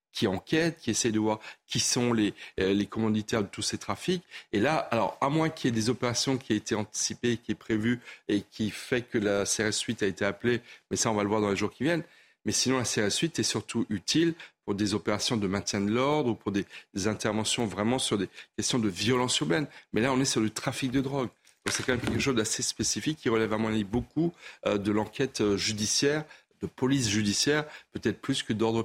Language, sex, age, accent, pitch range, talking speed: French, male, 40-59, French, 105-130 Hz, 235 wpm